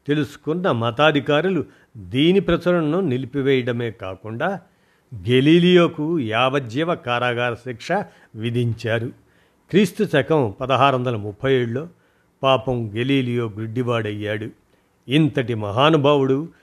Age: 50-69